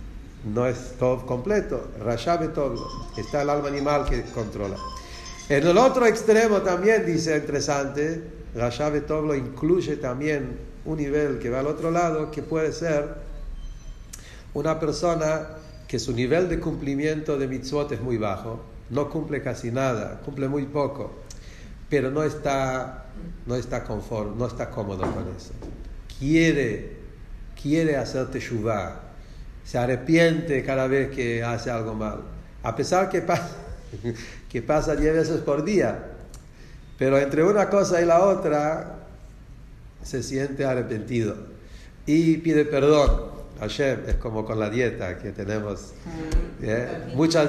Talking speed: 140 wpm